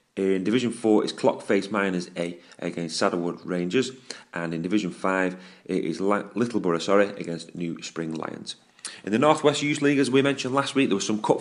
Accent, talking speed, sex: British, 195 wpm, male